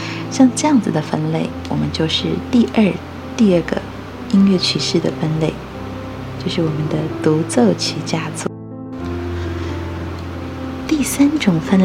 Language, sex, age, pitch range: Chinese, female, 20-39, 125-195 Hz